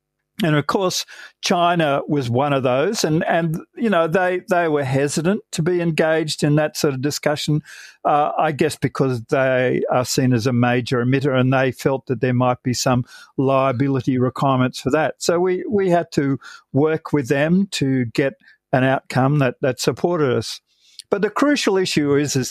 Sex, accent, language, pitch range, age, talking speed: male, Australian, English, 130-160 Hz, 50-69, 185 wpm